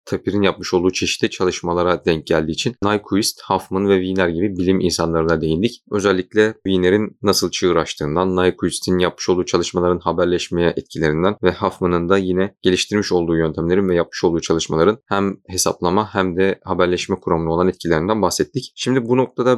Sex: male